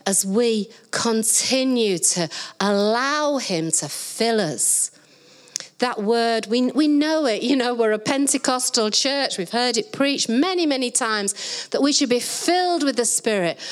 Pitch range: 200-285 Hz